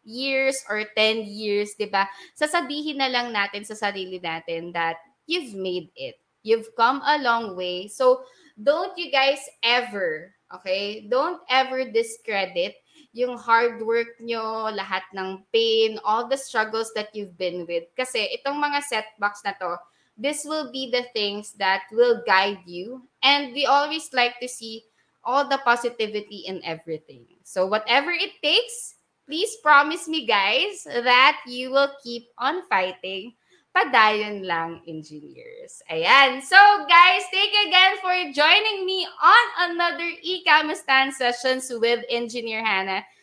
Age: 20-39